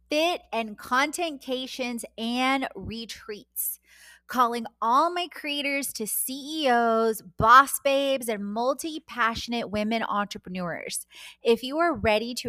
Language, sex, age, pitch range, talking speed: English, female, 20-39, 205-270 Hz, 105 wpm